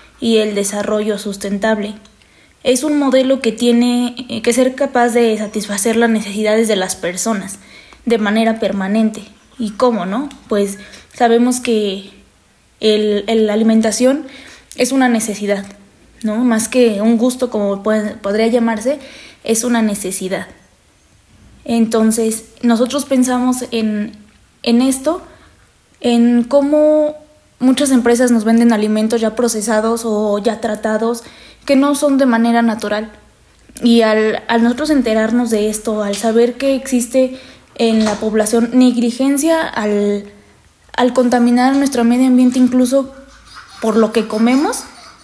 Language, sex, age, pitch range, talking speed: Spanish, female, 20-39, 215-255 Hz, 130 wpm